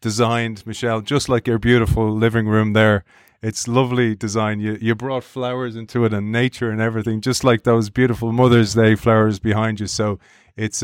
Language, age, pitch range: English, 30-49, 105-120 Hz